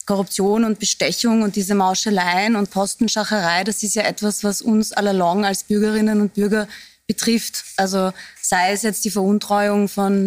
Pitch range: 195-220 Hz